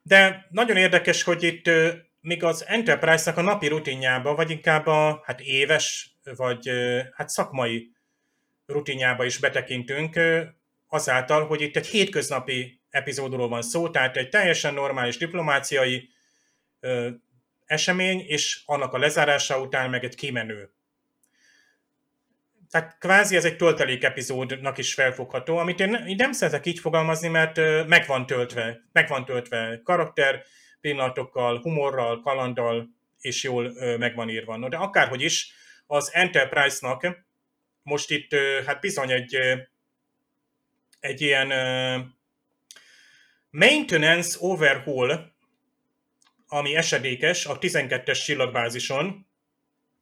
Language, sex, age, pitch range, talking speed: Hungarian, male, 30-49, 130-170 Hz, 105 wpm